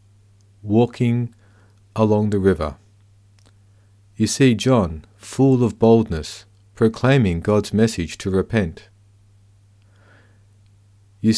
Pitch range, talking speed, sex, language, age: 100-110 Hz, 85 wpm, male, English, 50-69